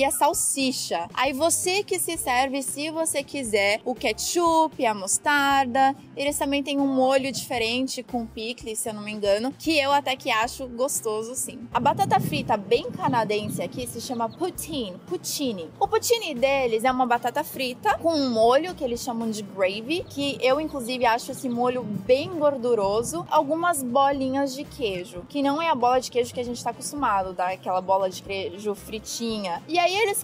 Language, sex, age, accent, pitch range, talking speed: Portuguese, female, 20-39, Brazilian, 235-300 Hz, 185 wpm